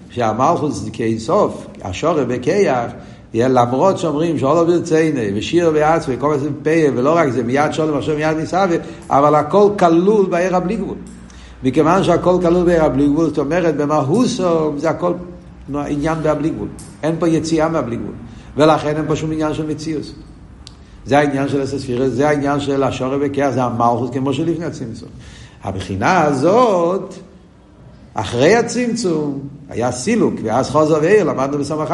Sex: male